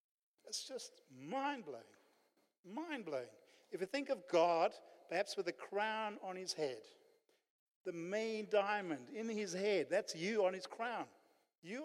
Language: English